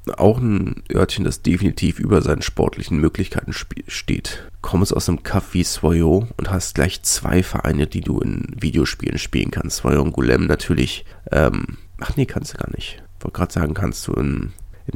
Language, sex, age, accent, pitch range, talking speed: German, male, 30-49, German, 85-105 Hz, 180 wpm